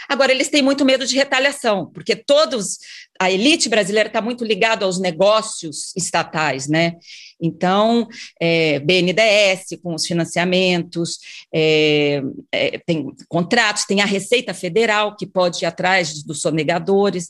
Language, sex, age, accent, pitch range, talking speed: Portuguese, female, 40-59, Brazilian, 170-220 Hz, 140 wpm